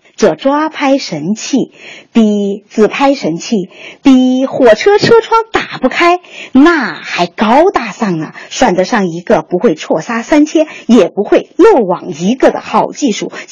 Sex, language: female, Chinese